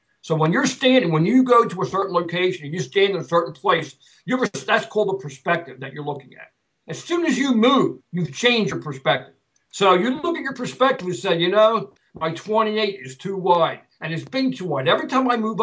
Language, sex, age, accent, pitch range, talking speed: English, male, 60-79, American, 155-215 Hz, 230 wpm